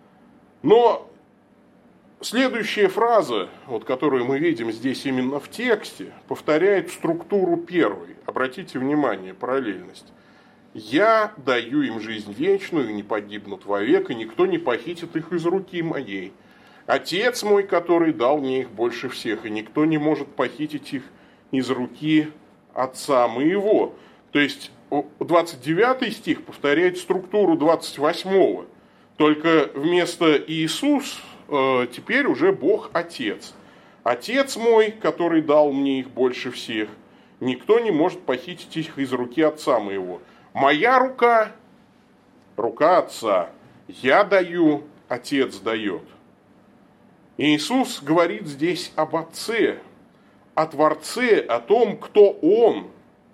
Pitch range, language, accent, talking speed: 150-250 Hz, Russian, native, 115 wpm